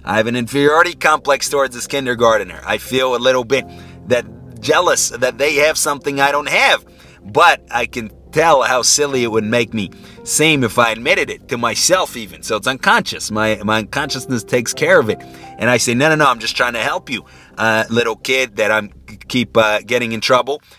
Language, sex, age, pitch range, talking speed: English, male, 30-49, 100-130 Hz, 210 wpm